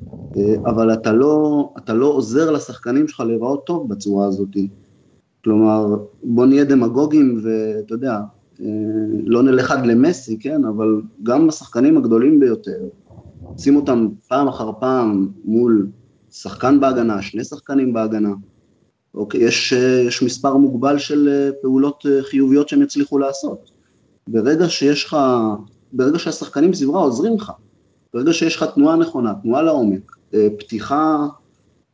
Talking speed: 120 wpm